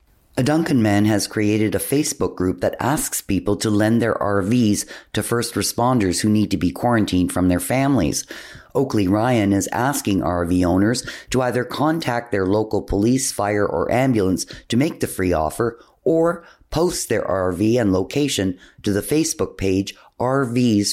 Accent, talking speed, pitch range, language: American, 165 wpm, 95-120 Hz, English